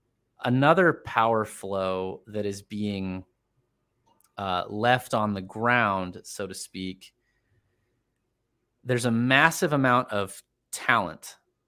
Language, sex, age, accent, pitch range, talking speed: English, male, 30-49, American, 100-120 Hz, 105 wpm